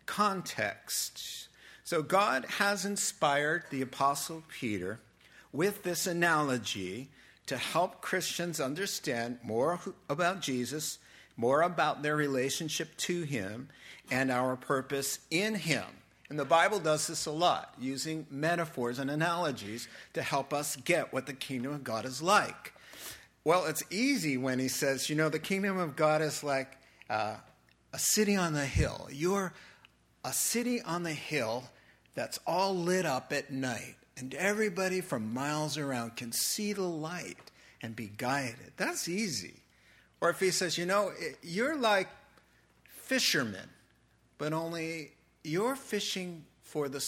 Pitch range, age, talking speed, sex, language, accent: 130-175 Hz, 50-69, 145 wpm, male, English, American